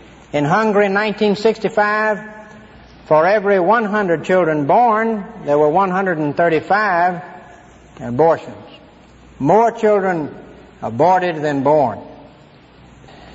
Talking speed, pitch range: 75 wpm, 155-210 Hz